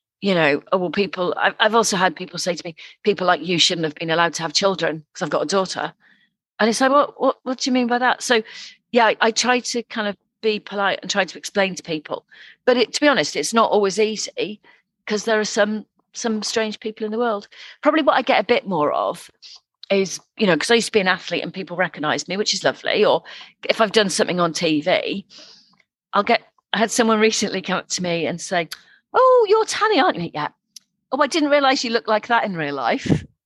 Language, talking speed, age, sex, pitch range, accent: English, 245 wpm, 40-59, female, 195-285 Hz, British